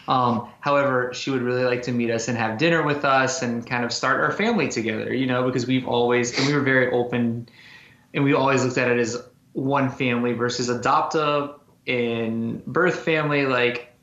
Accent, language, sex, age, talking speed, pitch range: American, English, male, 20-39, 195 wpm, 120-140 Hz